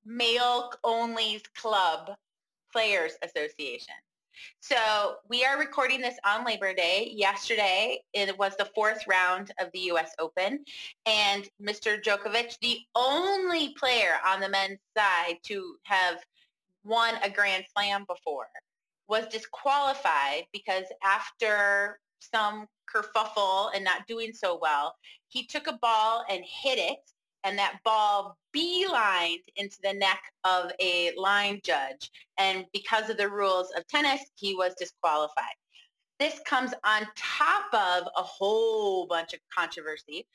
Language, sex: English, female